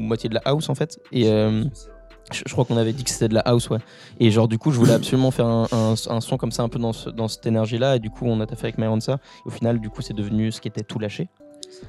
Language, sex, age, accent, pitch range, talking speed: French, male, 20-39, French, 110-130 Hz, 320 wpm